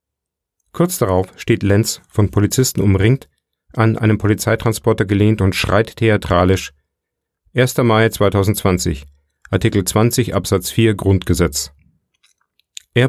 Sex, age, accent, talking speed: male, 40-59, German, 105 wpm